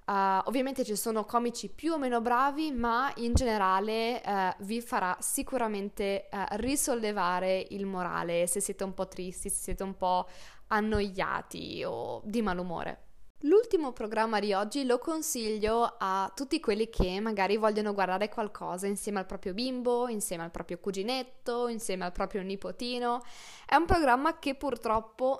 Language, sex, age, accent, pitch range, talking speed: Italian, female, 20-39, native, 195-245 Hz, 145 wpm